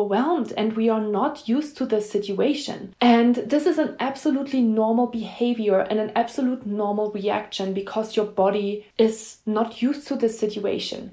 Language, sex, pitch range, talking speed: English, female, 210-260 Hz, 160 wpm